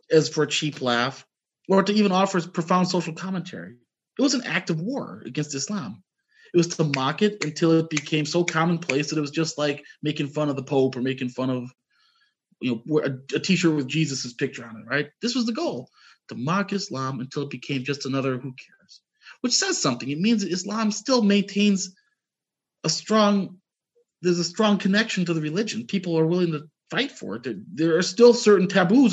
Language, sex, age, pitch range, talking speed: English, male, 30-49, 150-205 Hz, 205 wpm